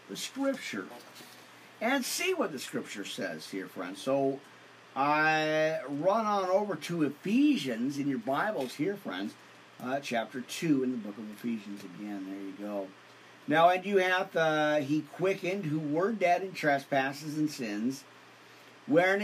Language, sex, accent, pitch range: English, male, American, 140-185 Hz